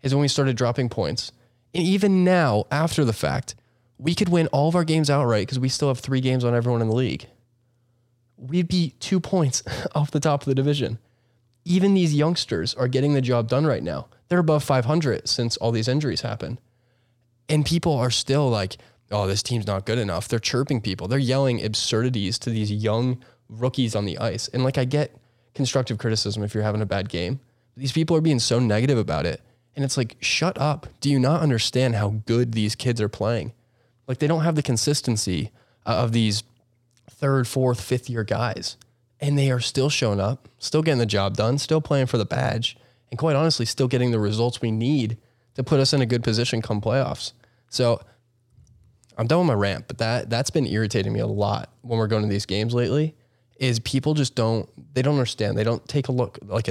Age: 10-29